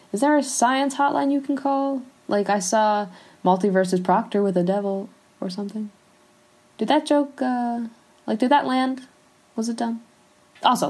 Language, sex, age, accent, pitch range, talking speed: English, female, 10-29, American, 160-230 Hz, 165 wpm